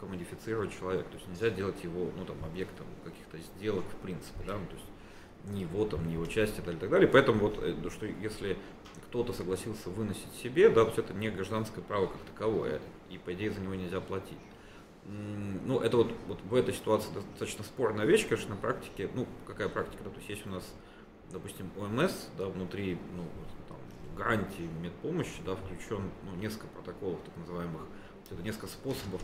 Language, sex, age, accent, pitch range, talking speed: Russian, male, 30-49, native, 90-105 Hz, 185 wpm